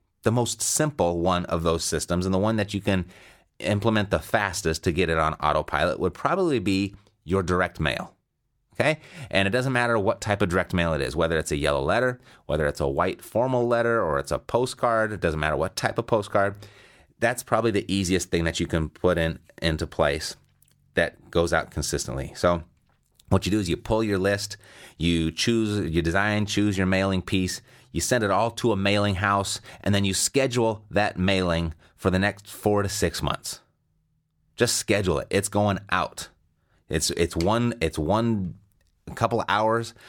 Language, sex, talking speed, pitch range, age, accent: English, male, 195 wpm, 85-105 Hz, 30-49, American